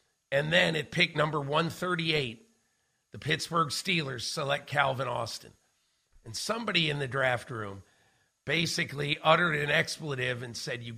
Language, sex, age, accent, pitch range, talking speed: English, male, 50-69, American, 135-165 Hz, 135 wpm